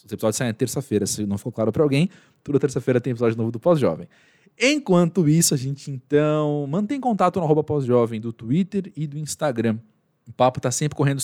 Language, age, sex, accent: Portuguese, 20-39, male, Brazilian